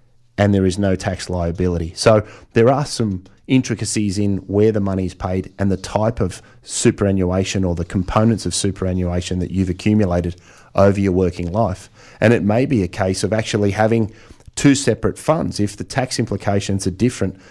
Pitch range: 95-110 Hz